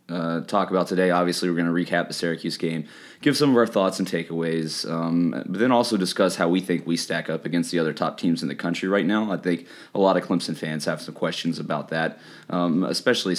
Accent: American